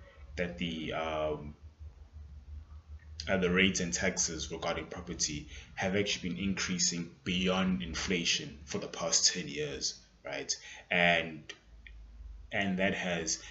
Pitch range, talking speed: 80-95 Hz, 115 wpm